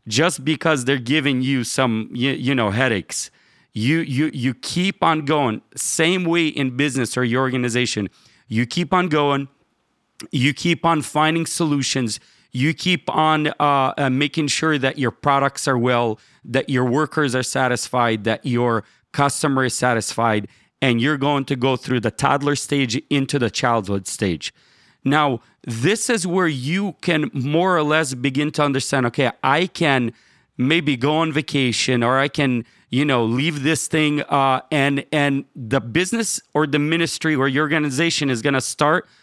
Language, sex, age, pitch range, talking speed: English, male, 40-59, 125-155 Hz, 165 wpm